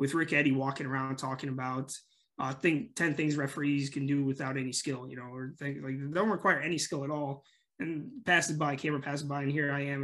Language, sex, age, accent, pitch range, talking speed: English, male, 20-39, American, 140-160 Hz, 220 wpm